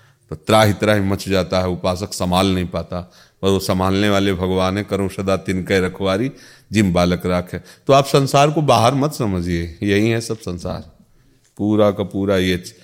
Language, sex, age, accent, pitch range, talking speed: Hindi, male, 40-59, native, 95-115 Hz, 180 wpm